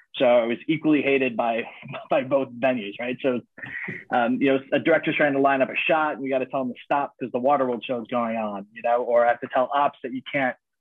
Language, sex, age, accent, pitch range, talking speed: English, male, 30-49, American, 125-155 Hz, 265 wpm